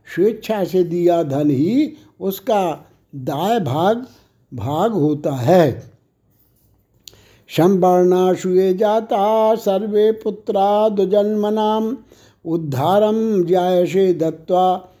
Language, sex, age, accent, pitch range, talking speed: Hindi, male, 60-79, native, 155-210 Hz, 80 wpm